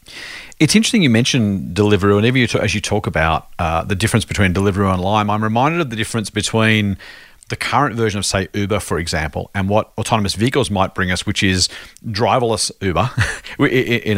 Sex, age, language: male, 40-59, English